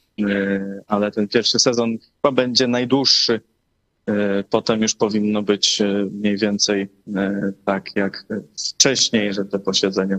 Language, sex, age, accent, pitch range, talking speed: Polish, male, 20-39, native, 100-110 Hz, 110 wpm